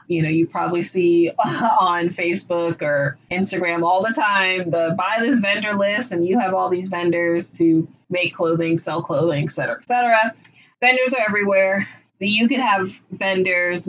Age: 20-39